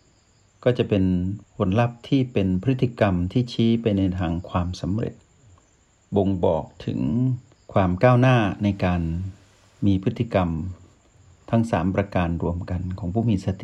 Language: Thai